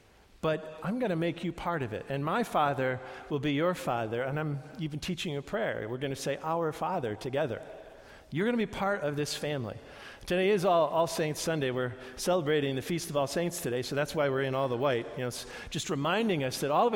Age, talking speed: 50-69, 235 wpm